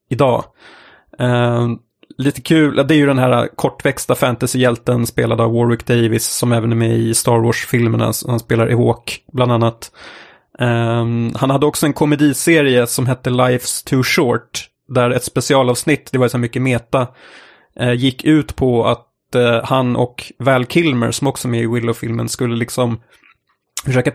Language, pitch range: Swedish, 120-135 Hz